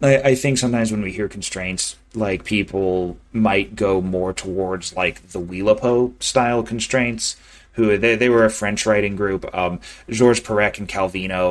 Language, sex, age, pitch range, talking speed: English, male, 30-49, 95-125 Hz, 160 wpm